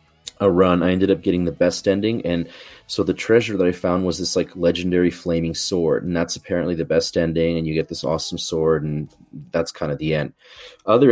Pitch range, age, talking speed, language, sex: 85-95 Hz, 30-49, 220 wpm, English, male